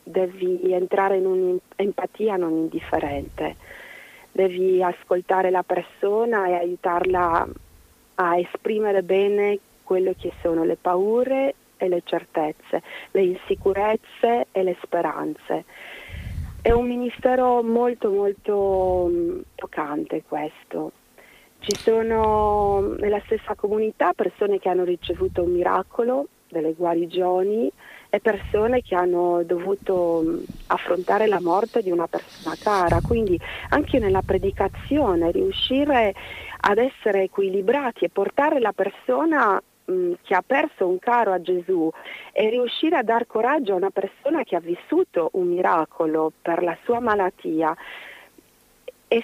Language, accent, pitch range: Italian, native, 180-235 Hz